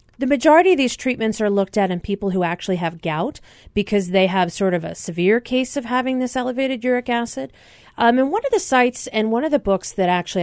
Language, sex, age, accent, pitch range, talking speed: English, female, 40-59, American, 180-250 Hz, 235 wpm